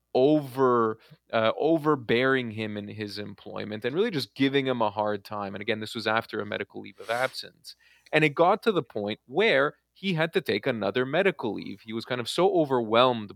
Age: 30-49